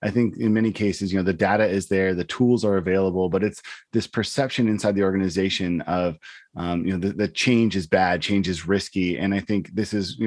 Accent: American